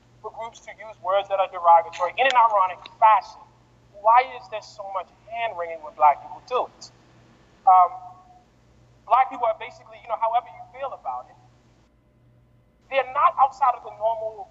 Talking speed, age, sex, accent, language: 170 wpm, 30-49, male, American, English